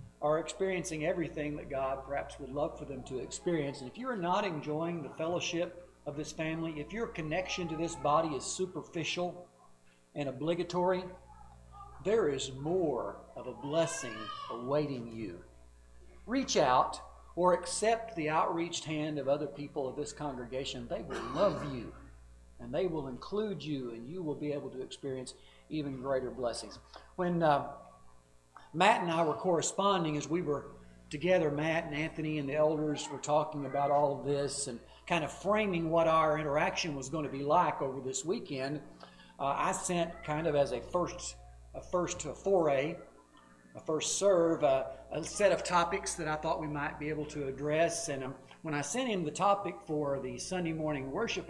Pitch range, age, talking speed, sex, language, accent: 135-170 Hz, 50-69, 180 wpm, male, English, American